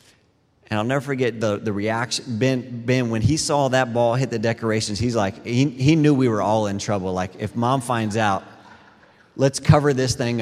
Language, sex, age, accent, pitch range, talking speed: English, male, 30-49, American, 115-195 Hz, 205 wpm